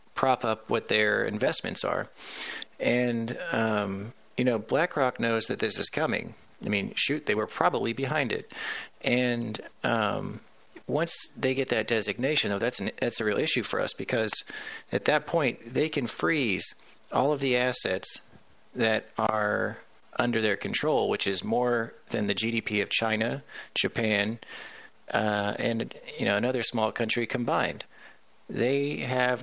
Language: English